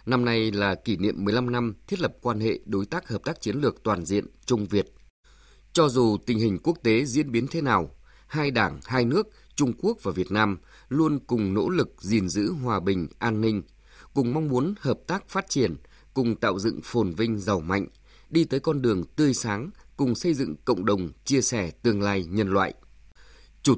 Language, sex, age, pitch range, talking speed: Vietnamese, male, 20-39, 100-140 Hz, 205 wpm